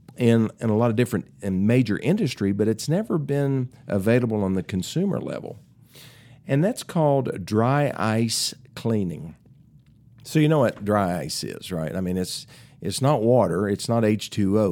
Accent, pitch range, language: American, 105-140 Hz, English